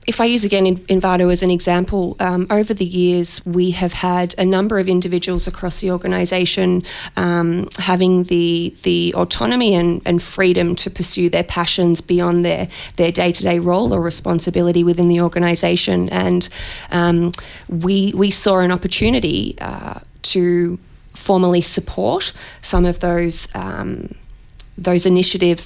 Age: 20-39